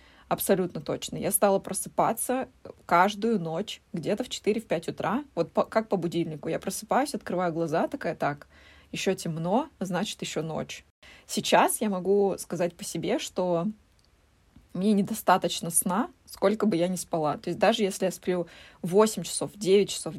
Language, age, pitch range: Russian, 20-39, 170-205 Hz